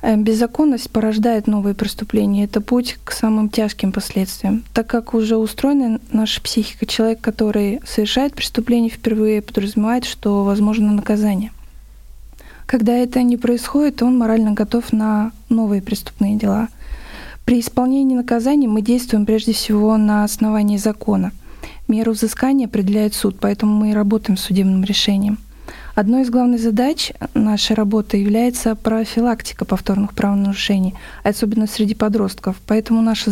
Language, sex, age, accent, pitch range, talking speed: Russian, female, 20-39, native, 205-230 Hz, 130 wpm